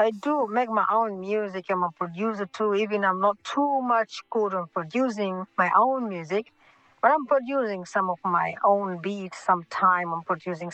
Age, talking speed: 50-69, 185 wpm